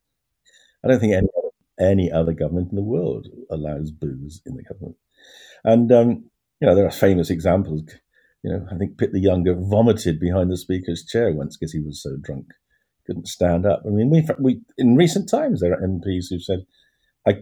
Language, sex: English, male